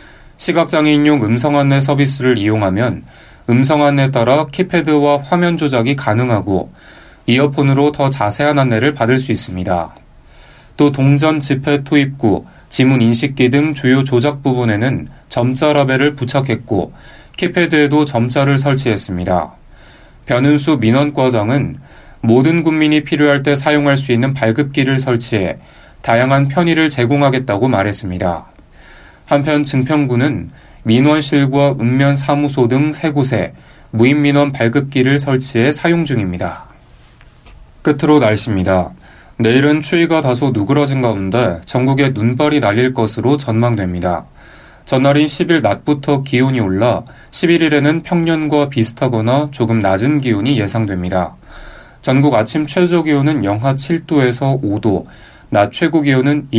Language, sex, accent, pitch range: Korean, male, native, 115-150 Hz